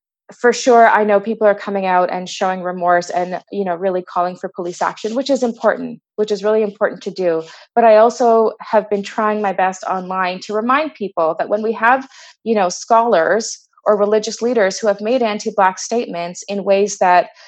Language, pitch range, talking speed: English, 190-265 Hz, 200 wpm